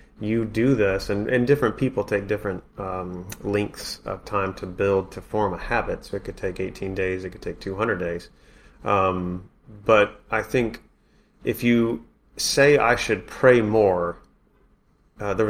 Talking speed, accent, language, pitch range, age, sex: 165 wpm, American, English, 90-105 Hz, 30-49, male